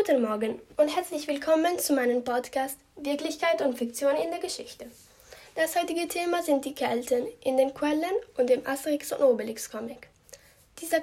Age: 10-29